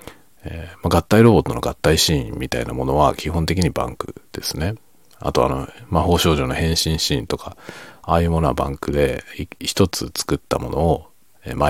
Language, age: Japanese, 40-59